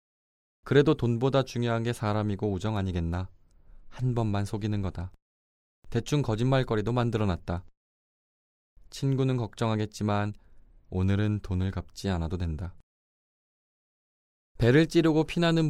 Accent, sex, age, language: native, male, 20-39, Korean